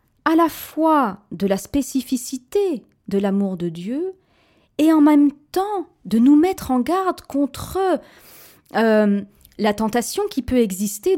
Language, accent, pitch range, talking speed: French, French, 185-280 Hz, 140 wpm